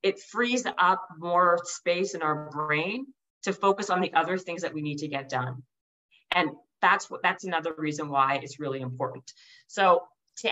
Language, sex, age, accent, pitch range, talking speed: English, female, 40-59, American, 150-195 Hz, 185 wpm